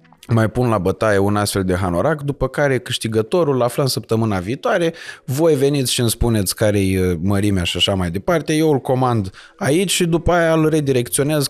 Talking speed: 185 wpm